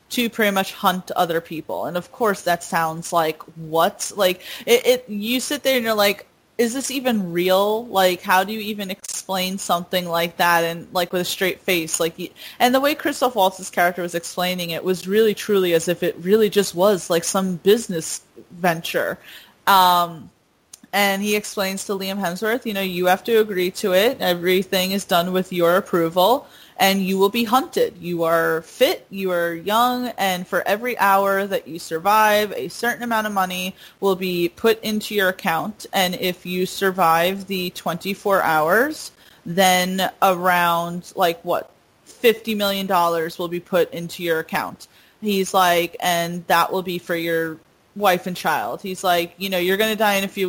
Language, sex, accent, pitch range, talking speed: English, female, American, 175-205 Hz, 185 wpm